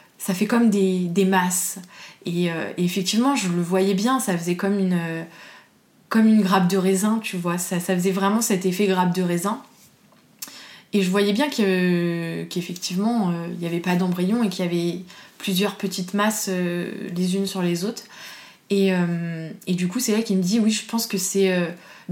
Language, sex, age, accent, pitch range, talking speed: French, female, 20-39, French, 180-205 Hz, 210 wpm